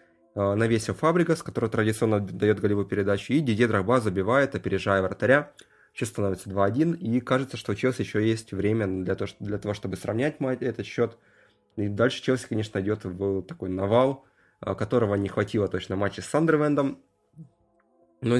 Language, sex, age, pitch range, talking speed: Russian, male, 20-39, 100-120 Hz, 150 wpm